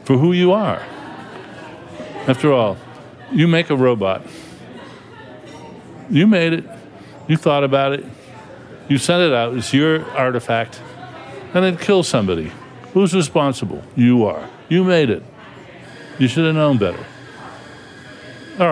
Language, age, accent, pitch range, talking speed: English, 60-79, American, 125-155 Hz, 130 wpm